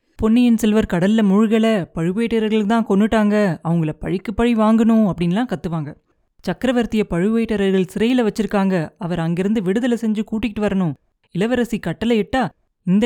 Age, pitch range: 30-49, 175-220 Hz